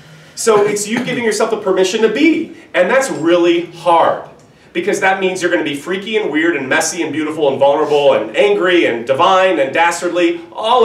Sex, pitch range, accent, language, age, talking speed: male, 165-270 Hz, American, English, 30-49, 195 wpm